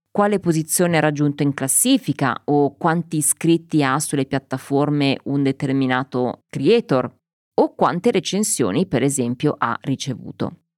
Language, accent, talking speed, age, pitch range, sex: Italian, native, 120 wpm, 20-39, 140-175 Hz, female